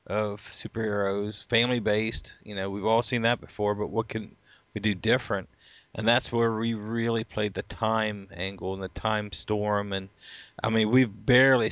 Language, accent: English, American